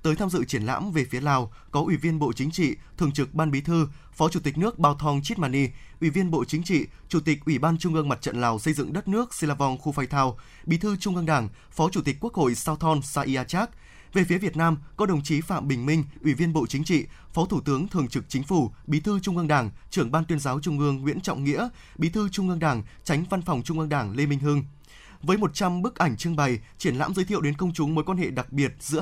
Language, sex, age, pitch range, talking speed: Vietnamese, male, 20-39, 135-175 Hz, 270 wpm